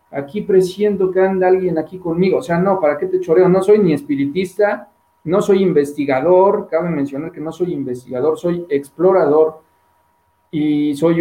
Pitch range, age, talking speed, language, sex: 140-185 Hz, 40-59, 165 wpm, Spanish, male